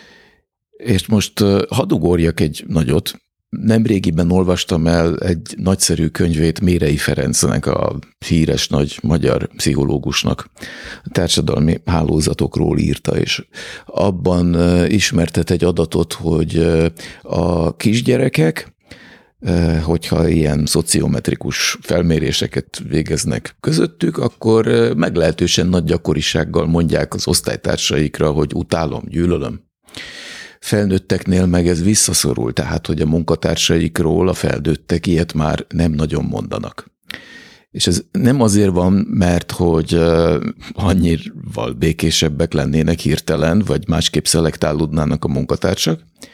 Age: 50-69